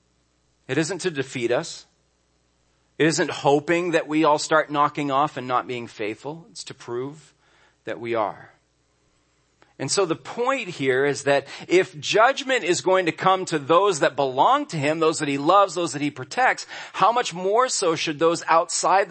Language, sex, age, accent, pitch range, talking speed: English, male, 40-59, American, 115-160 Hz, 180 wpm